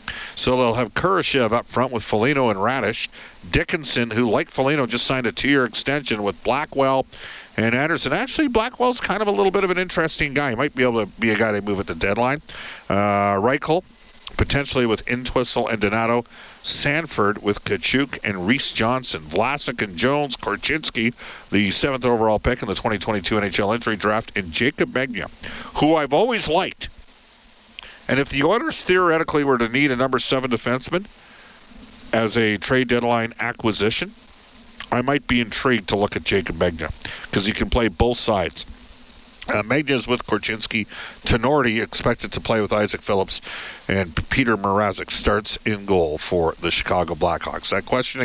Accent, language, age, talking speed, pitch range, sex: American, English, 50-69, 170 wpm, 105-140 Hz, male